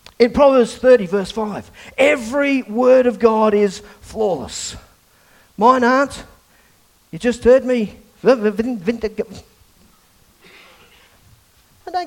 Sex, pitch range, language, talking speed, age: male, 150-240 Hz, English, 95 wpm, 40-59